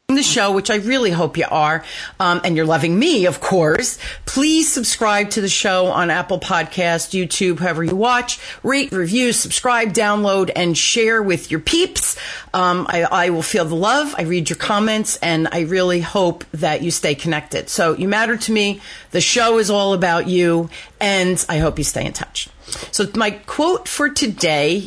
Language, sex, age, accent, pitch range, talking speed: English, female, 40-59, American, 175-235 Hz, 185 wpm